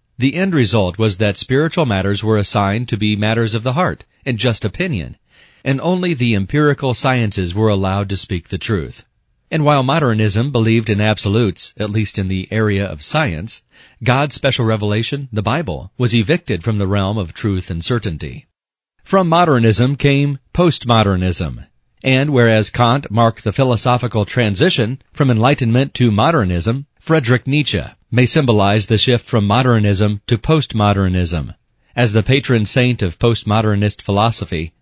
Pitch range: 105-130 Hz